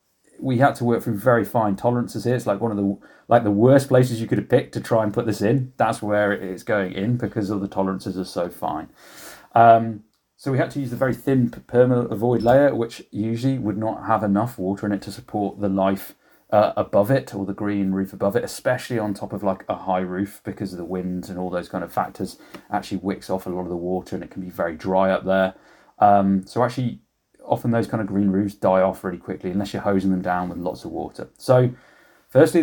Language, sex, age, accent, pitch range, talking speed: English, male, 30-49, British, 95-115 Hz, 245 wpm